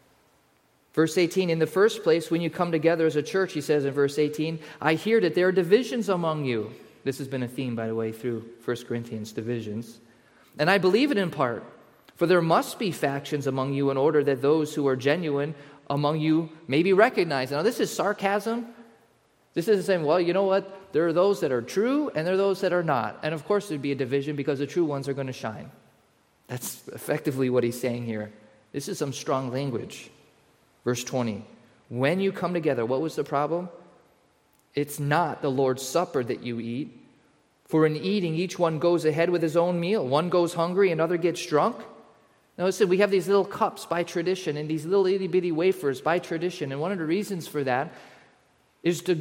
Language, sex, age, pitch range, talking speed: English, male, 30-49, 140-180 Hz, 215 wpm